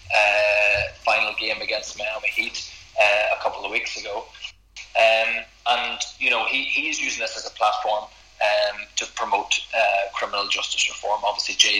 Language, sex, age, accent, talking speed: English, male, 20-39, Irish, 165 wpm